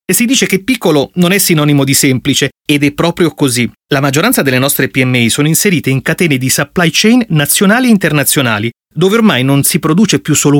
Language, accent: Italian, native